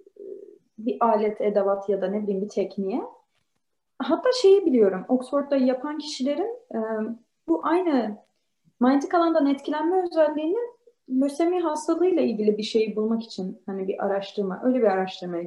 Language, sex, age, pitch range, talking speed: Turkish, female, 30-49, 205-270 Hz, 135 wpm